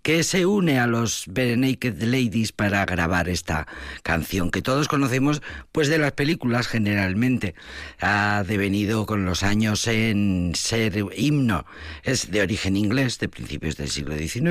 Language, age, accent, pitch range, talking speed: Spanish, 50-69, Spanish, 85-130 Hz, 150 wpm